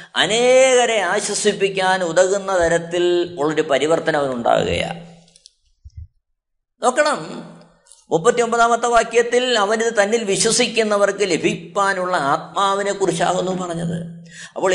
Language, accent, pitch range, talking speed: Malayalam, native, 160-230 Hz, 75 wpm